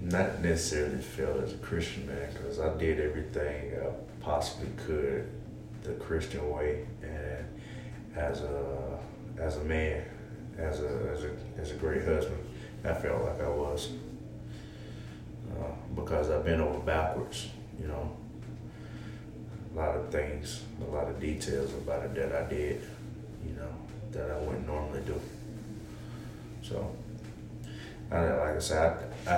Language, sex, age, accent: English, male, 30-49, American